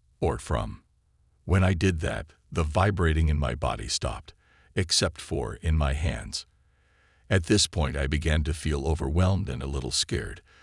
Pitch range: 70-95 Hz